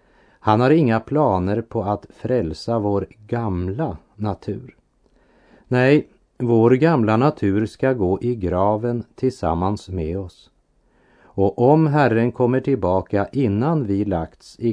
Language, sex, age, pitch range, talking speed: Swedish, male, 40-59, 95-120 Hz, 120 wpm